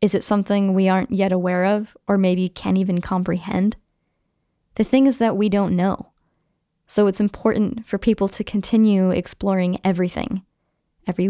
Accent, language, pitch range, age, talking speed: American, English, 185-210 Hz, 10-29, 160 wpm